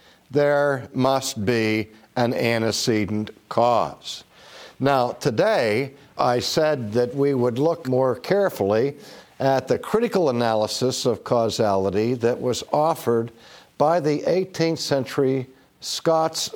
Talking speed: 110 wpm